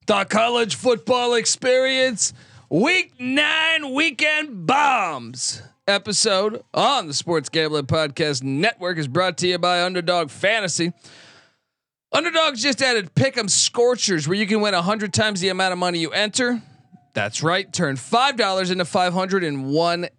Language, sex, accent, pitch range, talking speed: English, male, American, 155-215 Hz, 135 wpm